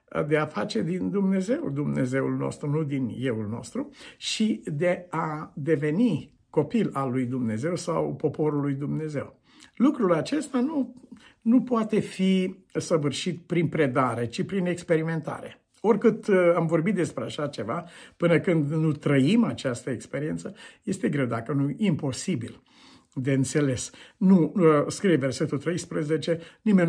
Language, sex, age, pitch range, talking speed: Romanian, male, 60-79, 135-180 Hz, 130 wpm